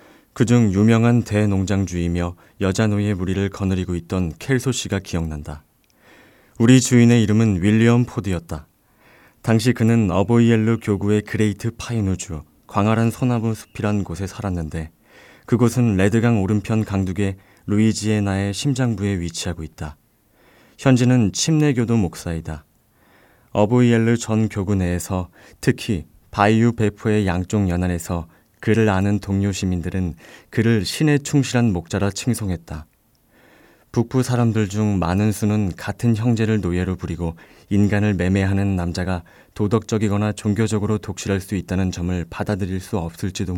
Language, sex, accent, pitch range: Korean, male, native, 90-115 Hz